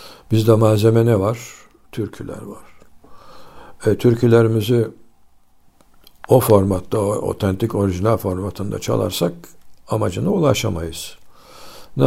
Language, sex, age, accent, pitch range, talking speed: Turkish, male, 60-79, native, 95-115 Hz, 90 wpm